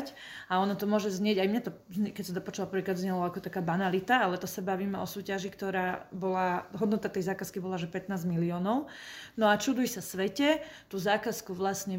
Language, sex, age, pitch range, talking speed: Slovak, female, 30-49, 190-210 Hz, 200 wpm